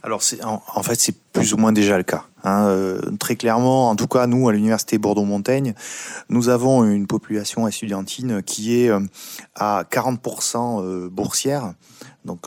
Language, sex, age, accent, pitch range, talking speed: French, male, 30-49, French, 95-120 Hz, 175 wpm